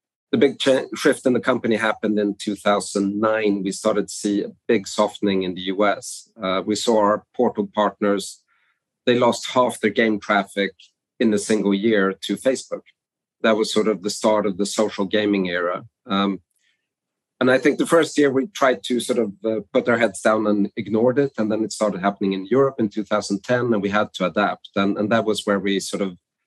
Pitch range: 100-115 Hz